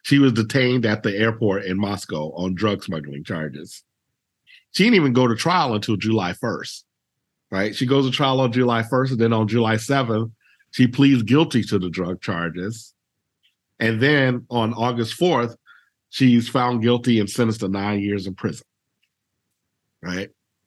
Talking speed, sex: 165 wpm, male